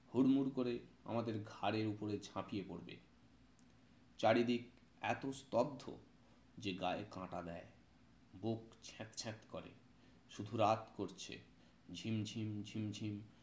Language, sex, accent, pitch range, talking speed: Bengali, male, native, 105-135 Hz, 100 wpm